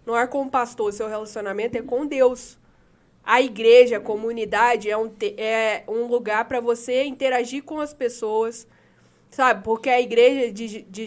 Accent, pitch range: Brazilian, 230-305 Hz